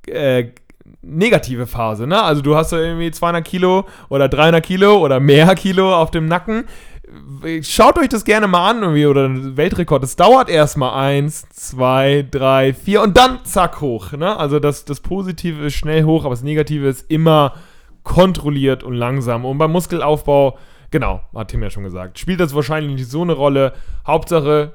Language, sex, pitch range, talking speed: German, male, 130-165 Hz, 175 wpm